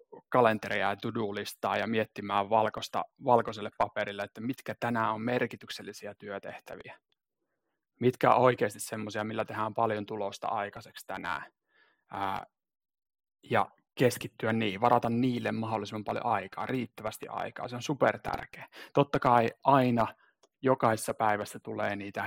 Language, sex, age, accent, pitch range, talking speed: Finnish, male, 30-49, native, 105-130 Hz, 120 wpm